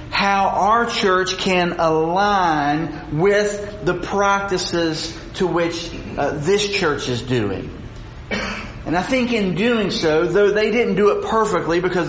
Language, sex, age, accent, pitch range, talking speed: English, male, 40-59, American, 150-200 Hz, 140 wpm